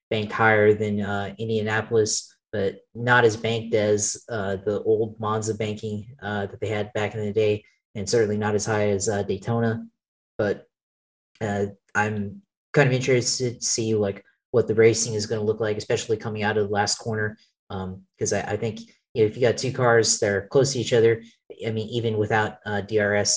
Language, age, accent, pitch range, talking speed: English, 30-49, American, 100-110 Hz, 200 wpm